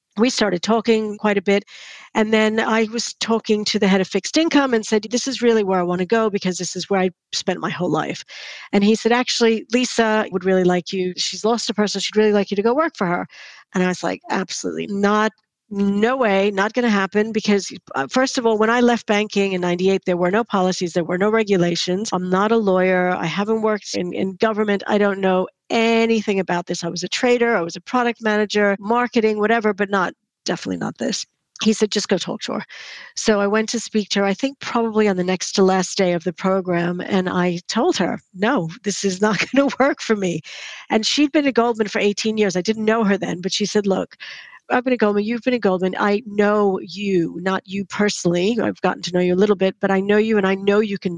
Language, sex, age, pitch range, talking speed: English, female, 50-69, 185-225 Hz, 245 wpm